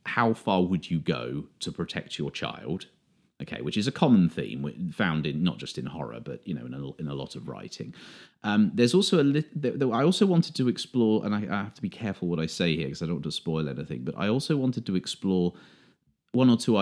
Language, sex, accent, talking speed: English, male, British, 250 wpm